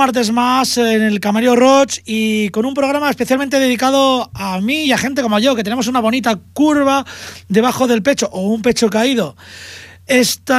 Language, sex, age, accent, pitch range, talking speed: Spanish, male, 30-49, Spanish, 195-255 Hz, 180 wpm